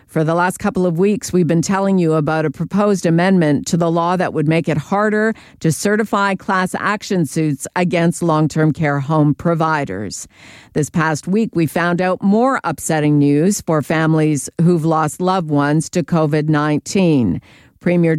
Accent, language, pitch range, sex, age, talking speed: American, English, 155-190 Hz, female, 50-69, 165 wpm